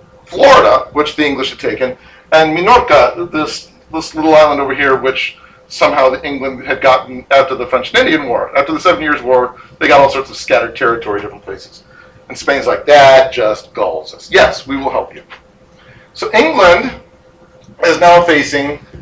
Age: 40-59